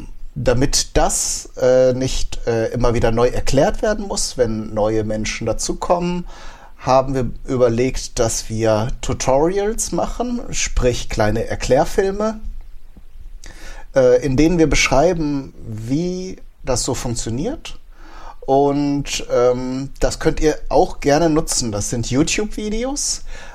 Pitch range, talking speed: 110-150 Hz, 115 wpm